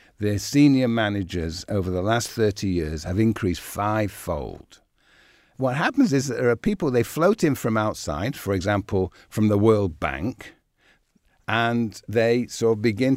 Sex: male